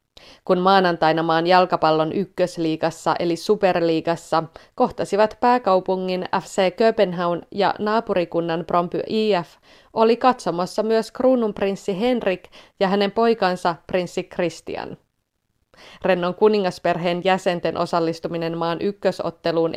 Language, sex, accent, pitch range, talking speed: Finnish, female, native, 165-205 Hz, 90 wpm